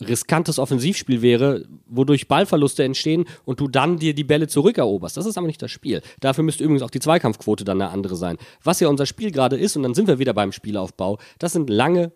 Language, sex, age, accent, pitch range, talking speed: German, male, 40-59, German, 125-190 Hz, 220 wpm